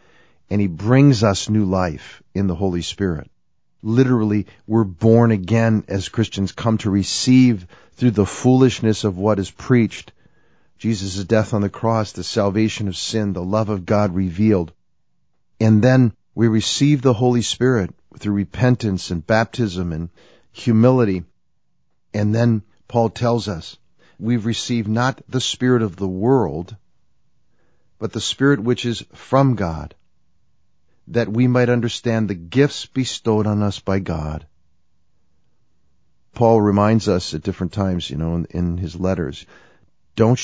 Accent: American